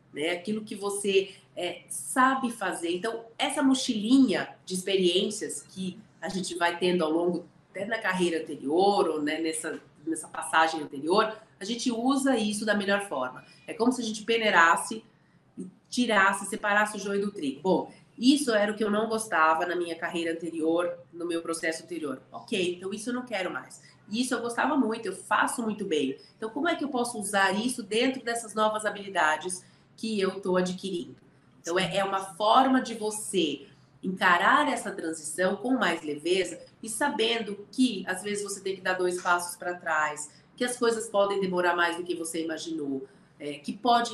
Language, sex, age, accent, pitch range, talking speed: Portuguese, female, 30-49, Brazilian, 175-225 Hz, 180 wpm